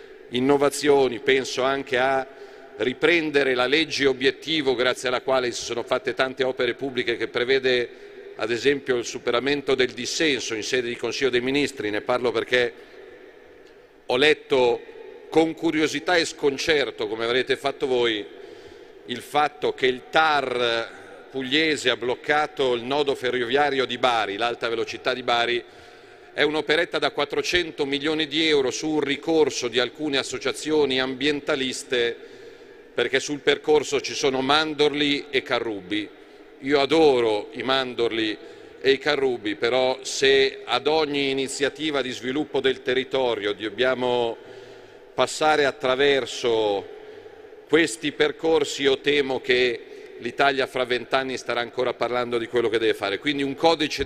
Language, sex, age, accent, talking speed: Italian, male, 40-59, native, 135 wpm